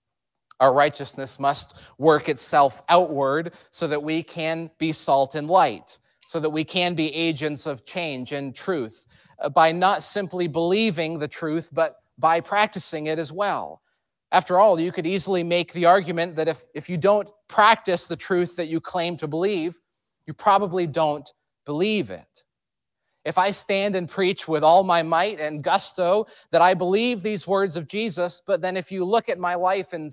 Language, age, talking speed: English, 30-49, 180 wpm